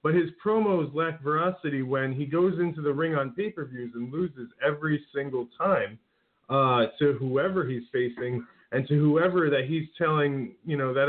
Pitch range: 140-170 Hz